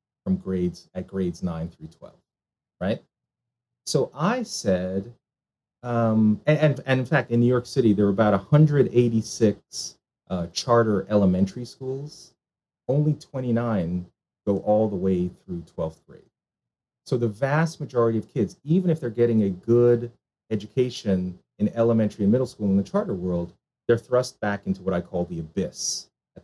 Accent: American